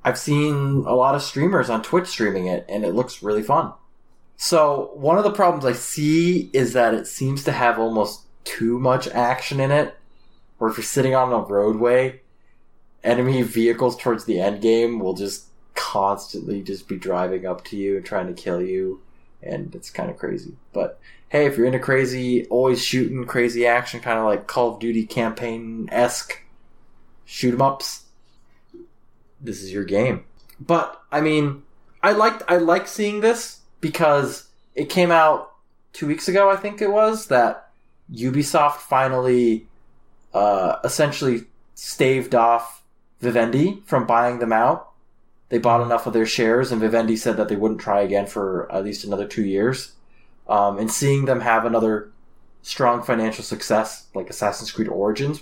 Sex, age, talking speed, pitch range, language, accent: male, 20-39, 165 wpm, 110-140 Hz, English, American